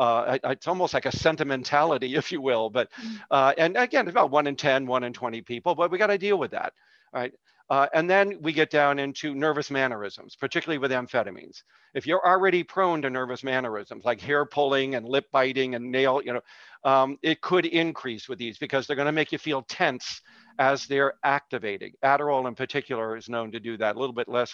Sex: male